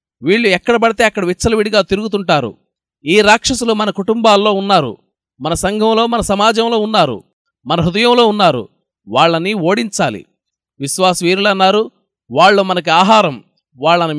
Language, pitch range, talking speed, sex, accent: Telugu, 180-220 Hz, 115 wpm, male, native